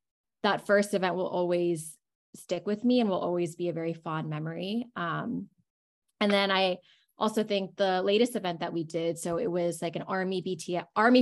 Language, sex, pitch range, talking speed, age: English, female, 175-220 Hz, 195 wpm, 20-39